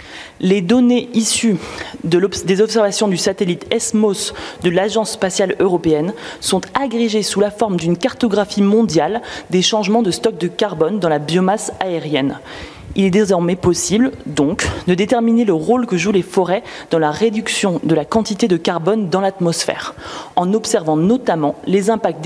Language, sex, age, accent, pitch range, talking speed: French, female, 20-39, French, 175-220 Hz, 155 wpm